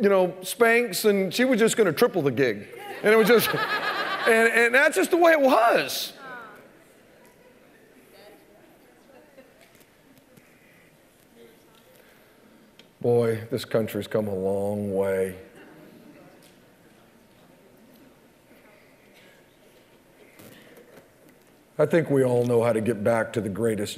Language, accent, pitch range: English, American, 120-165 Hz